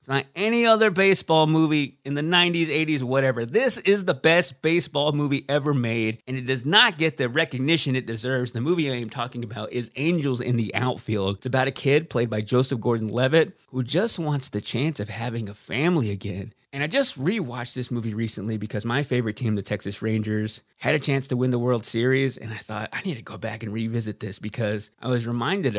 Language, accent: English, American